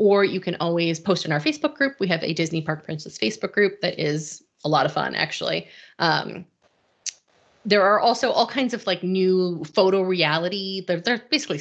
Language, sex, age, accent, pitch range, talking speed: English, female, 30-49, American, 165-215 Hz, 195 wpm